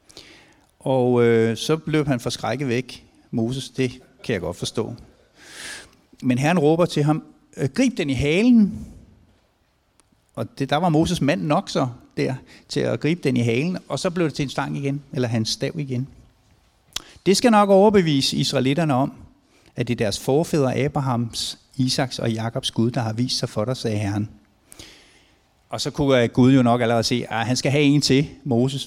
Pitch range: 120-145 Hz